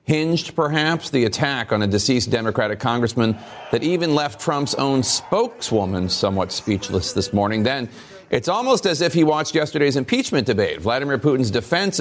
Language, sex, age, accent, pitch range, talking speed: English, male, 40-59, American, 105-155 Hz, 160 wpm